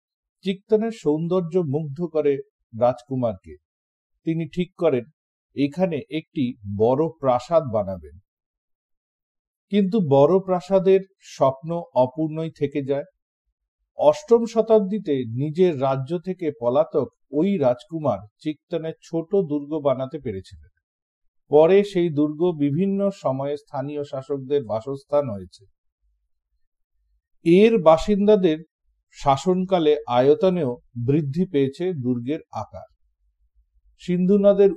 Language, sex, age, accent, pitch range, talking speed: Bengali, male, 50-69, native, 120-180 Hz, 90 wpm